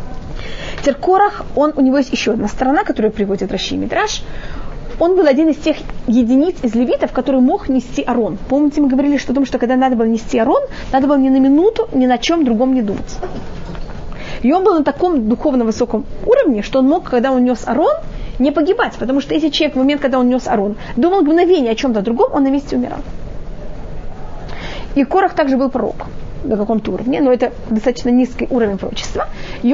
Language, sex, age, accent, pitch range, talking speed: Russian, female, 20-39, native, 240-295 Hz, 200 wpm